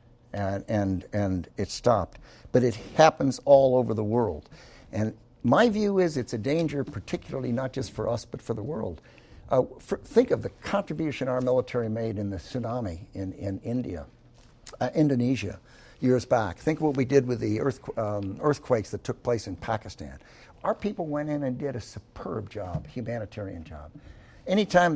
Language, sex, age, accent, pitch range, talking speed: English, male, 60-79, American, 115-140 Hz, 175 wpm